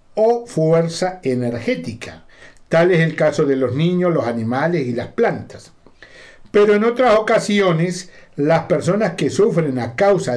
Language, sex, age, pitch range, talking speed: Spanish, male, 60-79, 140-185 Hz, 145 wpm